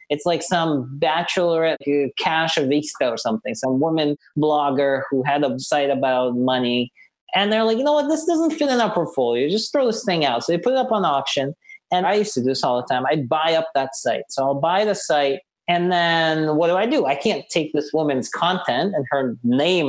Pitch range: 135-170 Hz